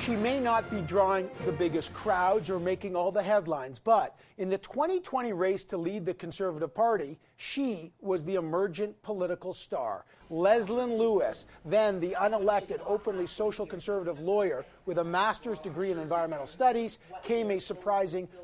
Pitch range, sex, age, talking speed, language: 180-215 Hz, male, 50-69, 155 wpm, English